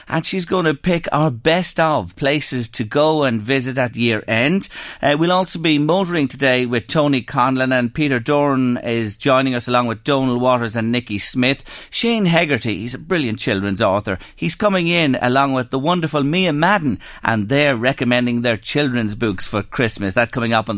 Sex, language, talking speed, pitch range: male, English, 190 wpm, 115-160 Hz